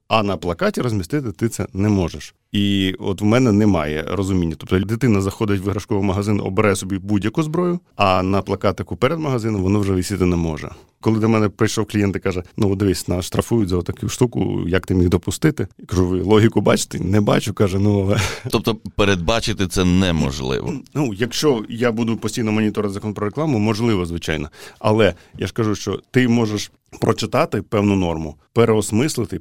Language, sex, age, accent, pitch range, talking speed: Ukrainian, male, 40-59, native, 95-115 Hz, 180 wpm